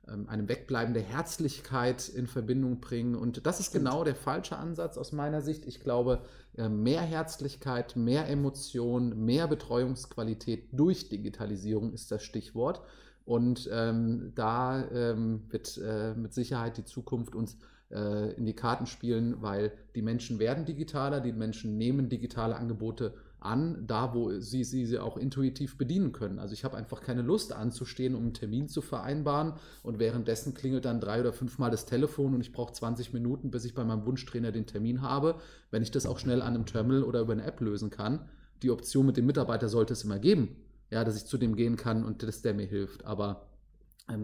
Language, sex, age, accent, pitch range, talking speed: German, male, 30-49, German, 110-130 Hz, 185 wpm